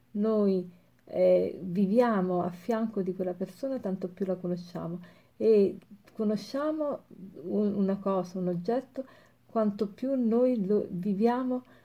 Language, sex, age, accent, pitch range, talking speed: Italian, female, 50-69, native, 180-220 Hz, 120 wpm